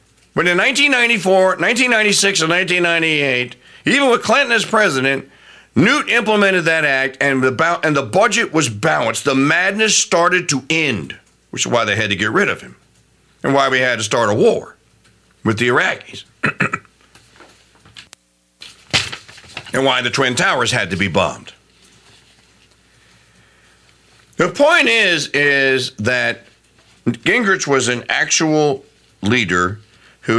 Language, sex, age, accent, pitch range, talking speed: English, male, 50-69, American, 110-180 Hz, 130 wpm